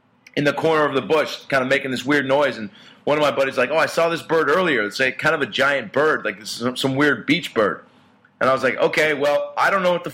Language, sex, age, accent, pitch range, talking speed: English, male, 30-49, American, 135-190 Hz, 270 wpm